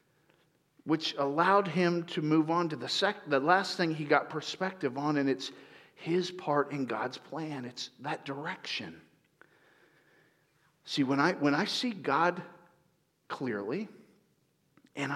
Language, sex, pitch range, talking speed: English, male, 165-235 Hz, 140 wpm